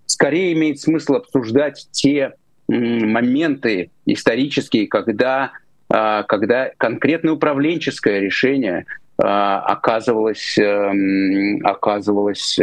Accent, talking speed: native, 85 wpm